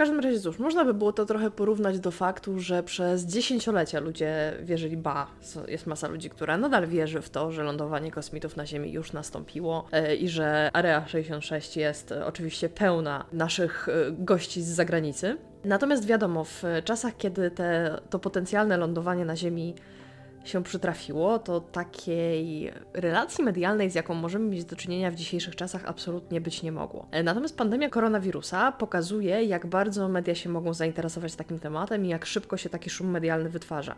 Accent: native